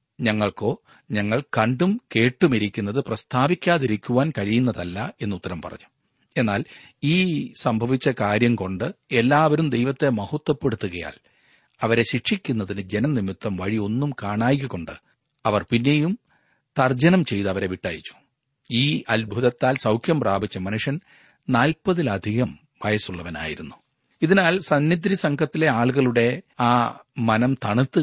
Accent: native